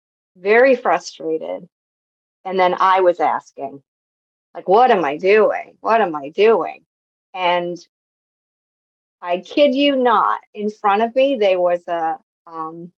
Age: 40-59